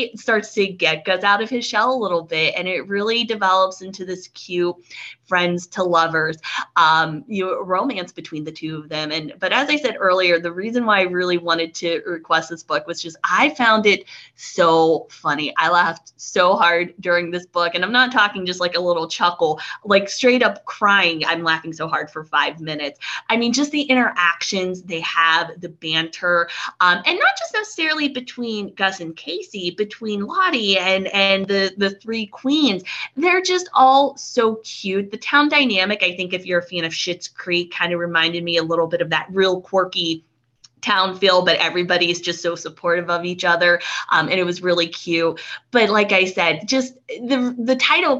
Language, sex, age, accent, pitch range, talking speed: English, female, 20-39, American, 170-250 Hz, 195 wpm